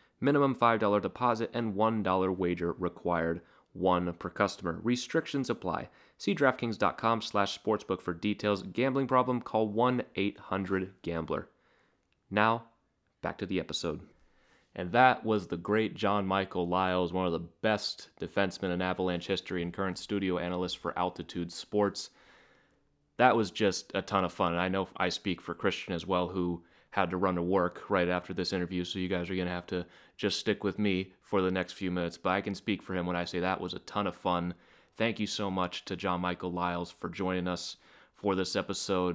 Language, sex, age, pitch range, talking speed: English, male, 30-49, 90-100 Hz, 185 wpm